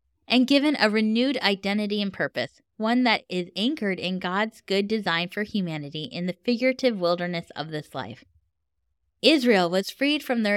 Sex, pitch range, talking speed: female, 170-240 Hz, 165 wpm